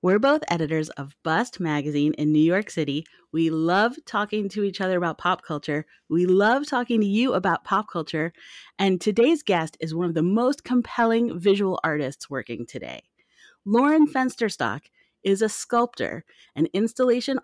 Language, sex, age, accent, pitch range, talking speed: English, female, 30-49, American, 160-220 Hz, 160 wpm